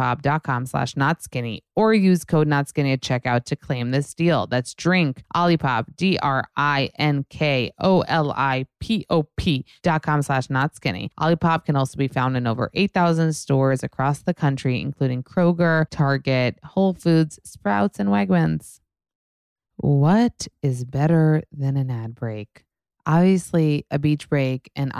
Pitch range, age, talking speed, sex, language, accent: 130-155 Hz, 20-39, 165 wpm, female, English, American